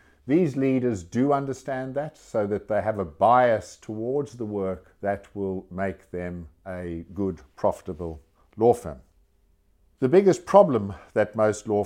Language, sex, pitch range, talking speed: English, male, 95-120 Hz, 145 wpm